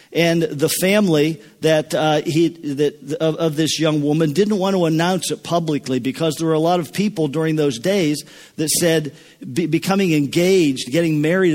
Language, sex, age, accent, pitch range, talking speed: English, male, 50-69, American, 150-180 Hz, 180 wpm